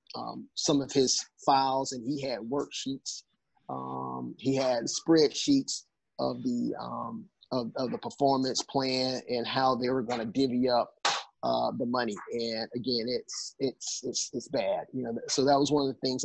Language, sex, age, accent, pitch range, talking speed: English, male, 30-49, American, 120-135 Hz, 180 wpm